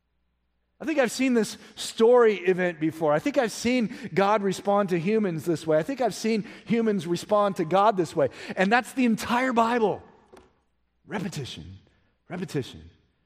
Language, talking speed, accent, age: English, 160 wpm, American, 50-69